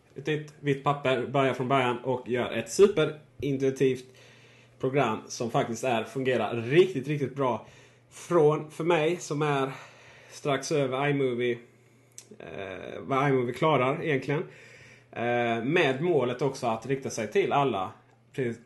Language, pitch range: Swedish, 120-140 Hz